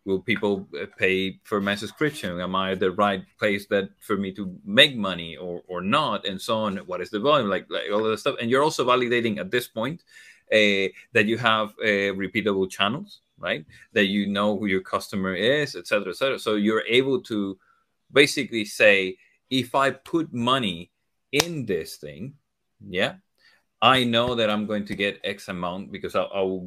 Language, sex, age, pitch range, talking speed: English, male, 30-49, 100-130 Hz, 190 wpm